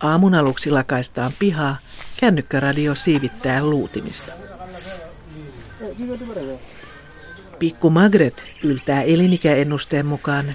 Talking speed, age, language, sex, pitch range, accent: 70 wpm, 60-79, Finnish, female, 140-175 Hz, native